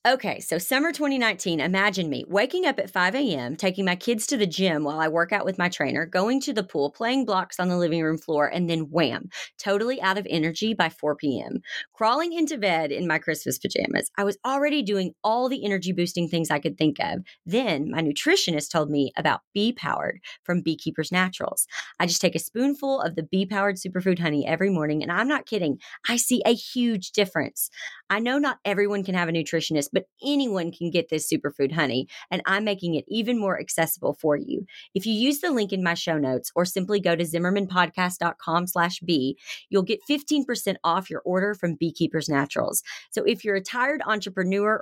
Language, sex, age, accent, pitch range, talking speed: English, female, 30-49, American, 165-215 Hz, 200 wpm